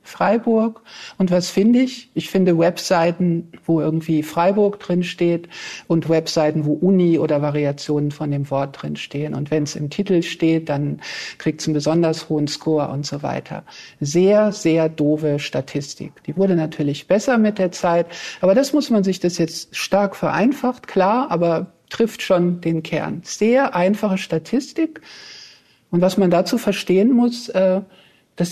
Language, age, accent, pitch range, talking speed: German, 50-69, German, 155-195 Hz, 160 wpm